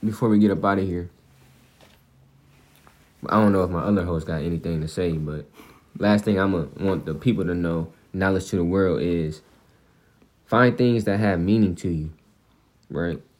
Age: 20-39